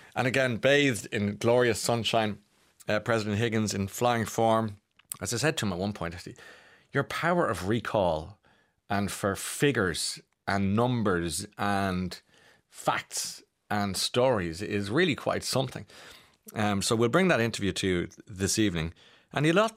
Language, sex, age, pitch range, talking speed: English, male, 30-49, 90-110 Hz, 150 wpm